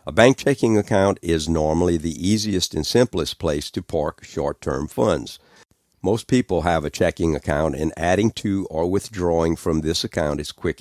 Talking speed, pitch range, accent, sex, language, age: 170 wpm, 75-95 Hz, American, male, English, 60-79